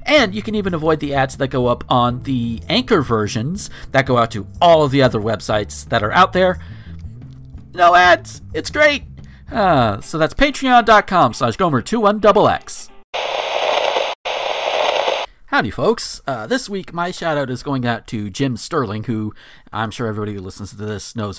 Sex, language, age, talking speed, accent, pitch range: male, English, 40-59, 165 wpm, American, 105-145 Hz